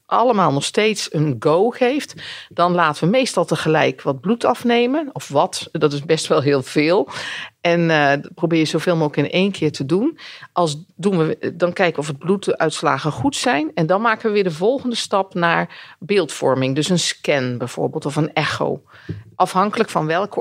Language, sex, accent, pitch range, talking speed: Dutch, female, Dutch, 145-180 Hz, 185 wpm